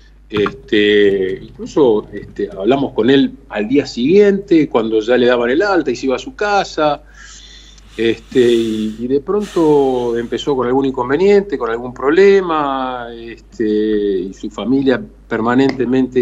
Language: Spanish